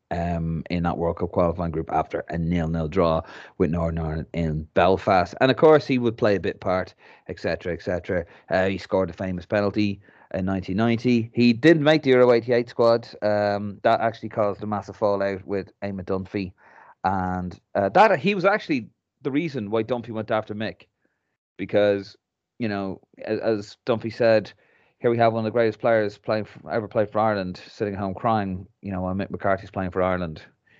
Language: English